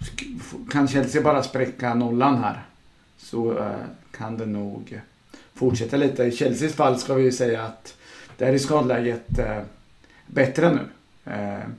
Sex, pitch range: male, 115-135 Hz